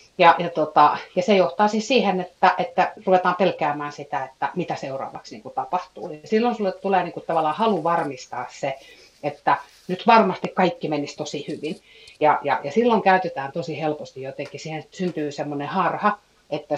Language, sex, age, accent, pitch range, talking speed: Finnish, female, 30-49, native, 140-175 Hz, 175 wpm